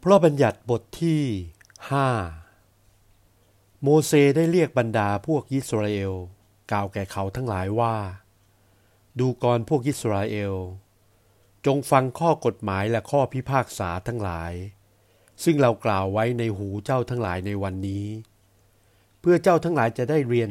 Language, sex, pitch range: Thai, male, 100-125 Hz